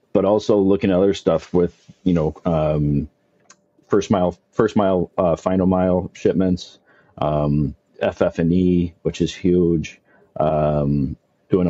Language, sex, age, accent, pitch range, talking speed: English, male, 40-59, American, 80-95 Hz, 130 wpm